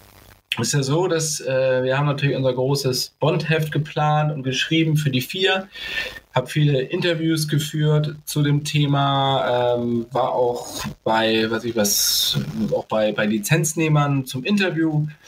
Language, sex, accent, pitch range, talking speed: German, male, German, 125-155 Hz, 150 wpm